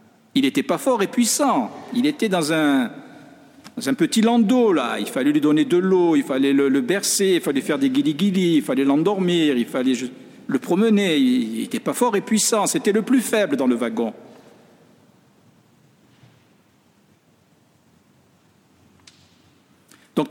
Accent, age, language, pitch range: French, 60-79, French, 180-270 Hz